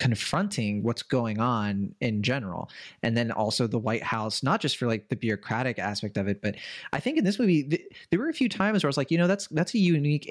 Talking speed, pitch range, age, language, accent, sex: 245 wpm, 110-150 Hz, 30-49, English, American, male